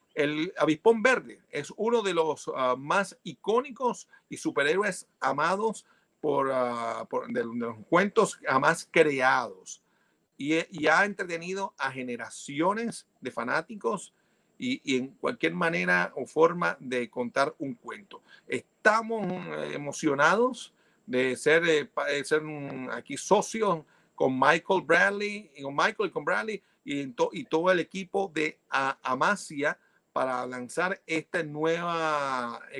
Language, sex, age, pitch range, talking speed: Spanish, male, 50-69, 135-200 Hz, 135 wpm